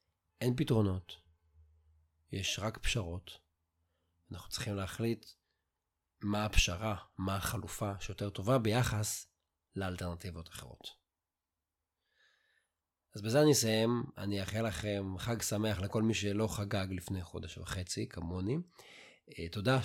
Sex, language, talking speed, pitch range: male, Hebrew, 105 wpm, 90-115 Hz